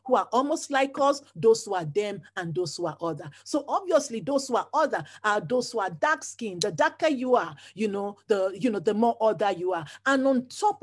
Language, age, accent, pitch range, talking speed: English, 40-59, Nigerian, 215-285 Hz, 240 wpm